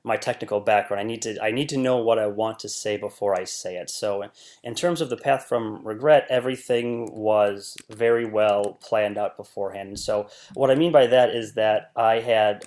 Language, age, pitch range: English, 30-49, 105-125 Hz